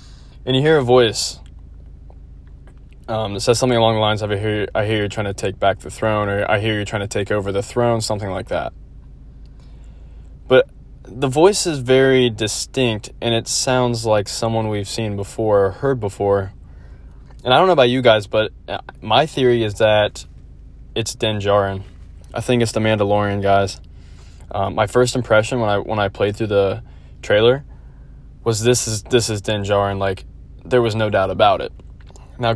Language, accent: English, American